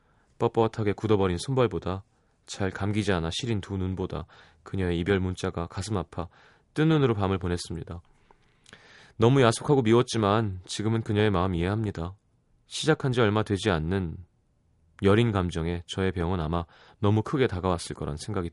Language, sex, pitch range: Korean, male, 90-120 Hz